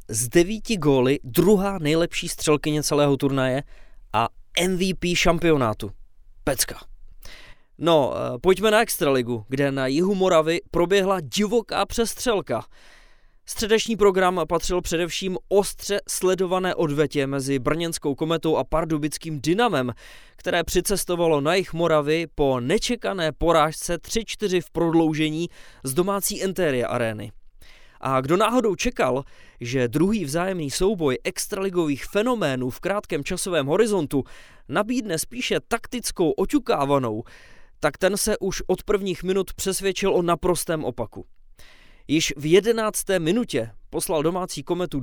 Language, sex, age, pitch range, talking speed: English, male, 20-39, 145-195 Hz, 115 wpm